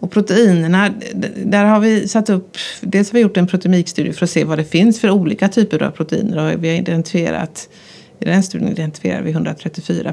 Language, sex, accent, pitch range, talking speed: Swedish, female, native, 170-205 Hz, 200 wpm